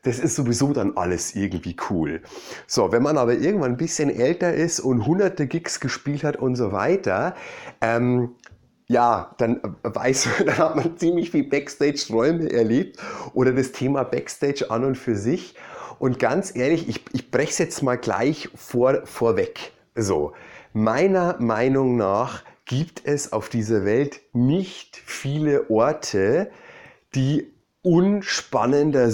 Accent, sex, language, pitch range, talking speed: German, male, German, 115-145 Hz, 145 wpm